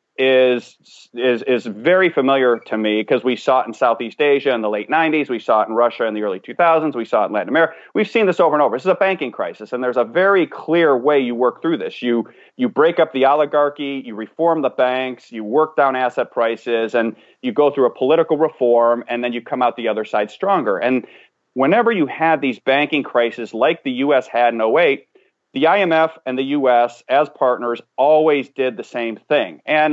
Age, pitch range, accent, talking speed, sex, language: 30-49, 120-155 Hz, American, 225 wpm, male, English